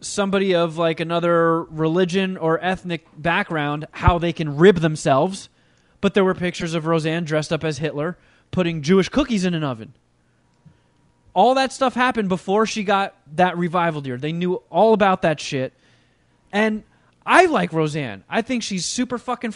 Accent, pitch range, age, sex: American, 150-200 Hz, 20-39, male